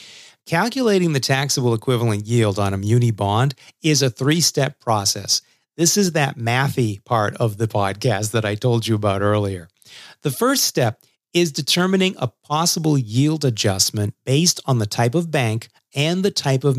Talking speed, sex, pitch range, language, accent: 165 wpm, male, 110-150 Hz, English, American